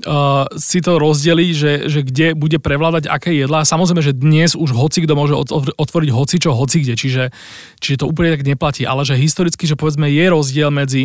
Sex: male